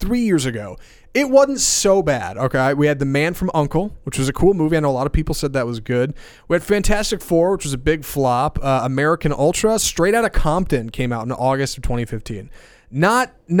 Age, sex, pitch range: 30-49, male, 130-170 Hz